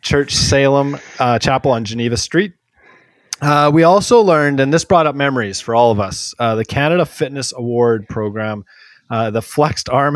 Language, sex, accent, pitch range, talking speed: English, male, American, 115-155 Hz, 175 wpm